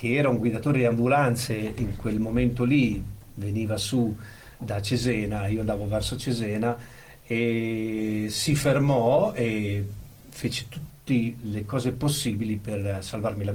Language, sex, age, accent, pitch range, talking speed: Italian, male, 50-69, native, 110-125 Hz, 135 wpm